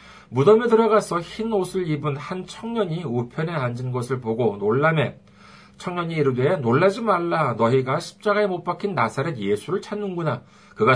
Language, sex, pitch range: Korean, male, 135-205 Hz